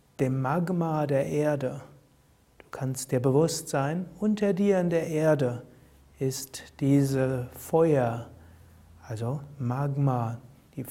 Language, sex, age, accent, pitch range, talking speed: German, male, 60-79, German, 130-170 Hz, 110 wpm